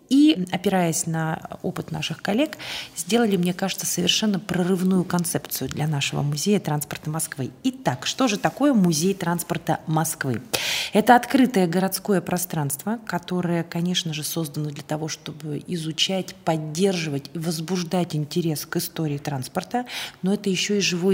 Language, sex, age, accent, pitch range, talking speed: Russian, female, 30-49, native, 160-195 Hz, 135 wpm